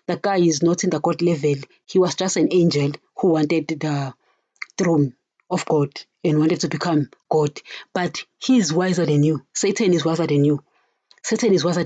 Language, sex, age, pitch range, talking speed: English, female, 30-49, 160-185 Hz, 190 wpm